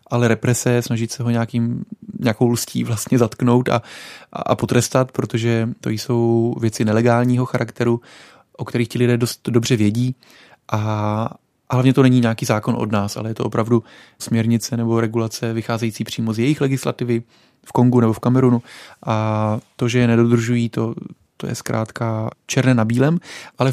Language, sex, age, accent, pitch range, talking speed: Czech, male, 20-39, native, 115-130 Hz, 160 wpm